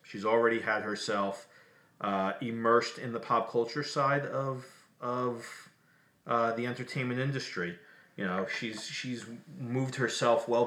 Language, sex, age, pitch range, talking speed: English, male, 30-49, 100-120 Hz, 135 wpm